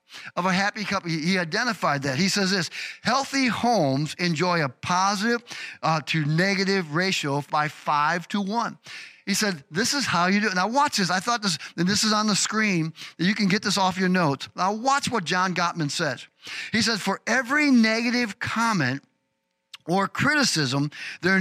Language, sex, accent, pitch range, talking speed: English, male, American, 165-220 Hz, 180 wpm